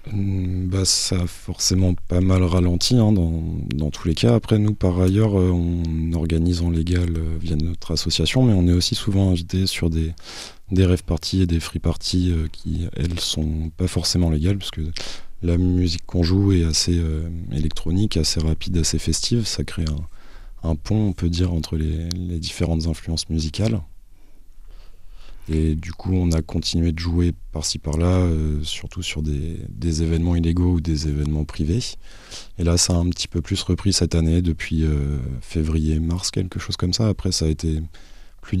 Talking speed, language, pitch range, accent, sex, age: 185 wpm, French, 80-90 Hz, French, male, 20-39